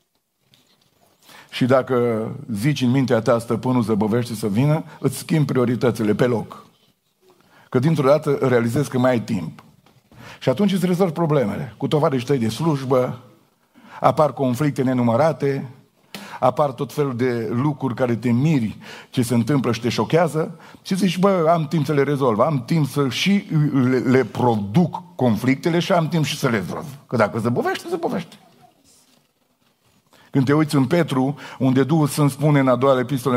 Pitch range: 125-155 Hz